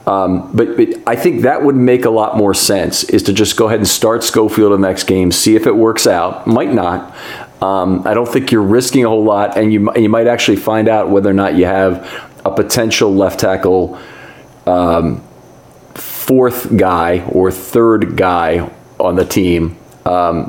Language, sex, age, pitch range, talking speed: English, male, 40-59, 90-110 Hz, 195 wpm